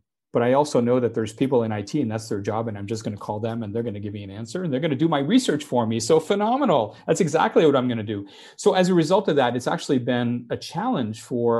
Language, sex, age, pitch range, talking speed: English, male, 40-59, 115-140 Hz, 300 wpm